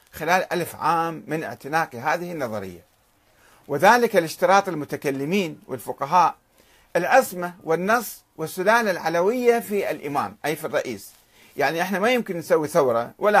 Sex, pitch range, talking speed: male, 140-205 Hz, 120 wpm